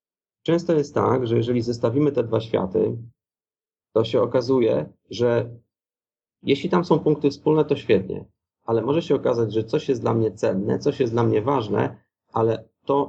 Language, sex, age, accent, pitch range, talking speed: Polish, male, 30-49, native, 110-130 Hz, 170 wpm